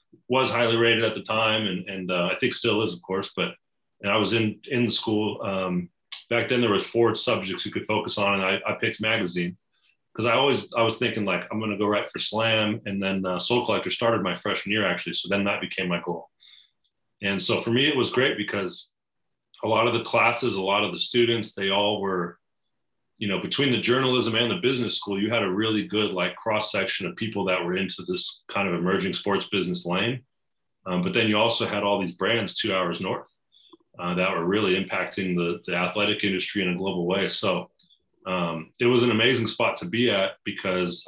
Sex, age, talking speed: male, 30-49, 225 wpm